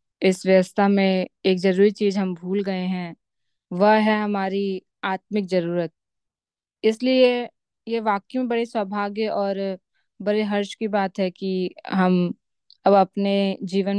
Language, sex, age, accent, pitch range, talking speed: Hindi, female, 20-39, native, 185-205 Hz, 135 wpm